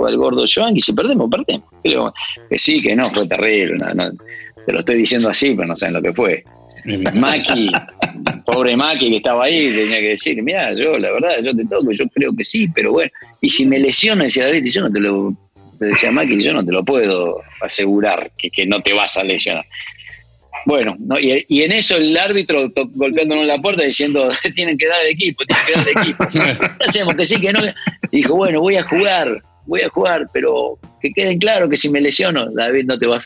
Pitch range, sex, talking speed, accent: 105-175 Hz, male, 225 wpm, Argentinian